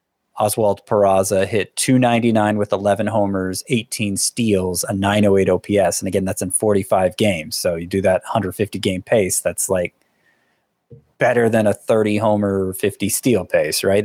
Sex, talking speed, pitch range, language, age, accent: male, 155 wpm, 100-120 Hz, English, 20-39, American